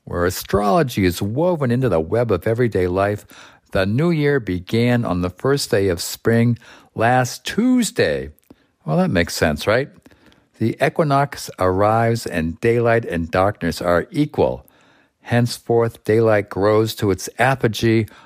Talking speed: 140 wpm